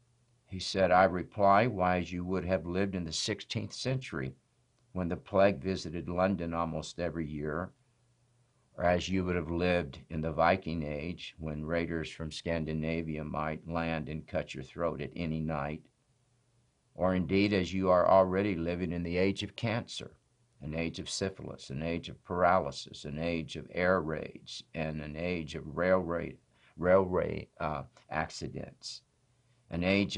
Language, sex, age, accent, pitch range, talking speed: English, male, 60-79, American, 80-100 Hz, 160 wpm